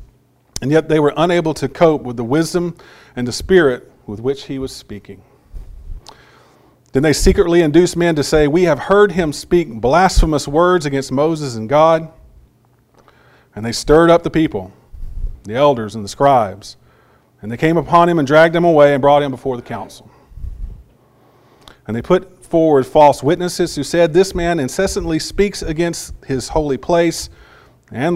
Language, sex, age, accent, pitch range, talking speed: English, male, 40-59, American, 125-160 Hz, 170 wpm